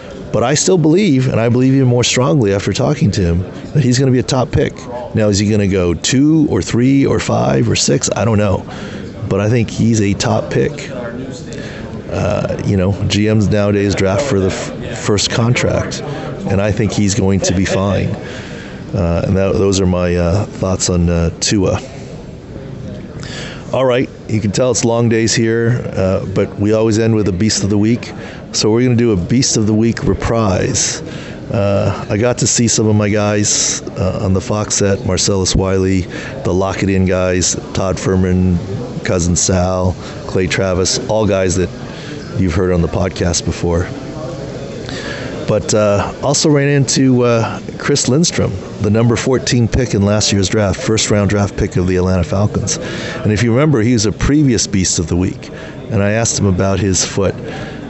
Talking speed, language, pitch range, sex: 190 wpm, English, 95-120 Hz, male